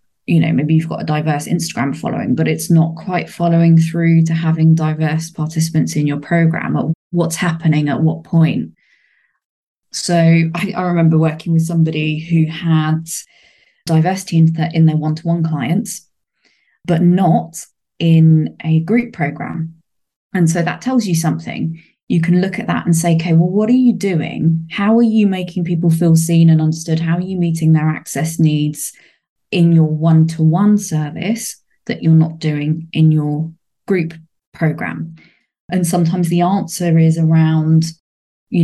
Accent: British